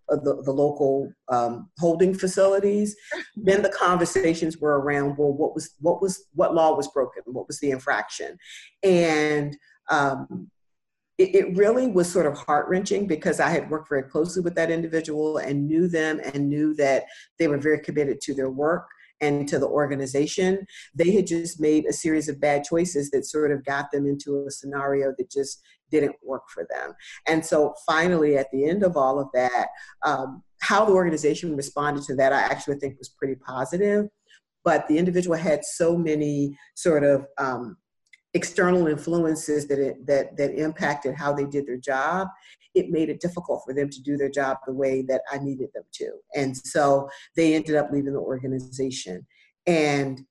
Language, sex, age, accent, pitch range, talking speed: English, female, 50-69, American, 140-170 Hz, 180 wpm